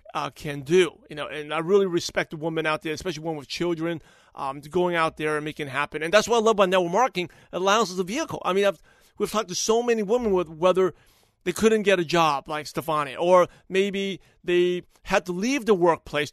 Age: 30-49